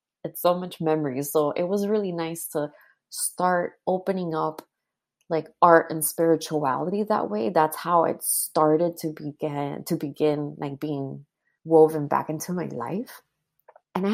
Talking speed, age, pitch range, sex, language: 150 wpm, 20-39, 150-175 Hz, female, English